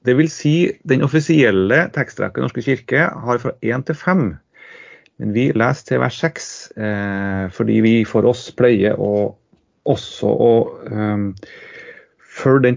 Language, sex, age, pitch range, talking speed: English, male, 30-49, 105-135 Hz, 160 wpm